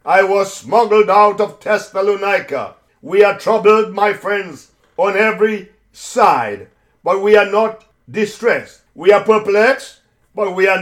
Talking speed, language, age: 140 wpm, English, 60-79